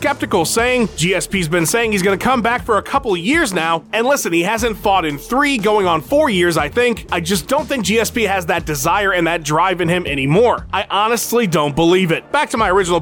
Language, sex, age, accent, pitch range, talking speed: English, male, 30-49, American, 165-235 Hz, 230 wpm